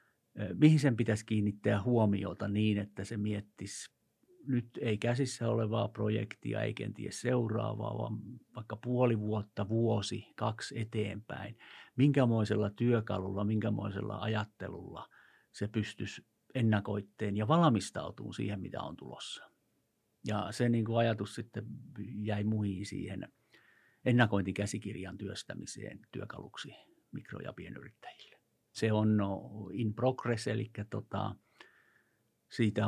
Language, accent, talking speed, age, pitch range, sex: Finnish, native, 100 wpm, 50-69, 100-120 Hz, male